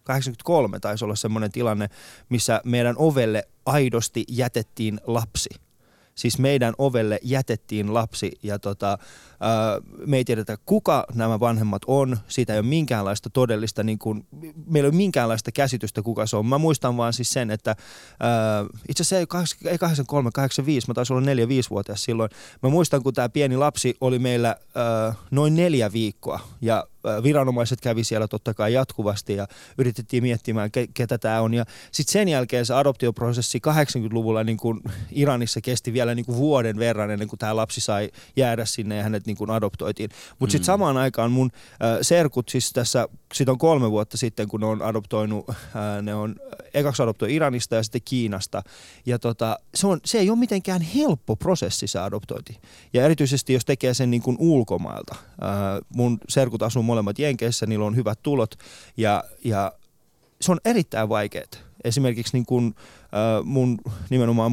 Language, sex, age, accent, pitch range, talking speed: Finnish, male, 20-39, native, 110-135 Hz, 160 wpm